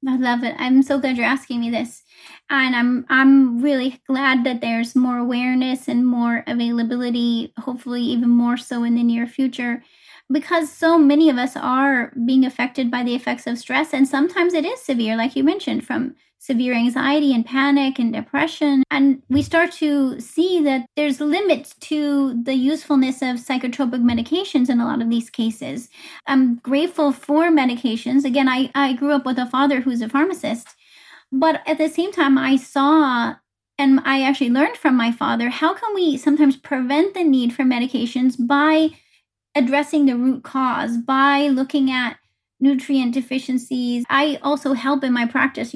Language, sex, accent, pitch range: English, female, American, 250-285 Hz